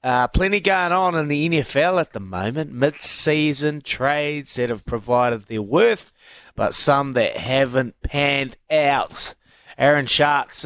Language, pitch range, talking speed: English, 115-150 Hz, 140 wpm